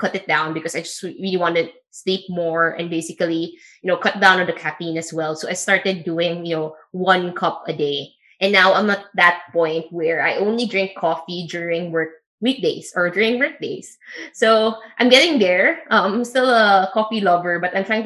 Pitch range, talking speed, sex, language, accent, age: 170-235 Hz, 205 wpm, female, English, Filipino, 20-39